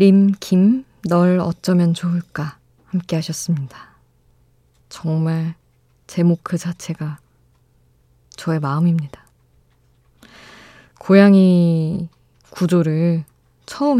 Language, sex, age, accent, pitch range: Korean, female, 20-39, native, 155-185 Hz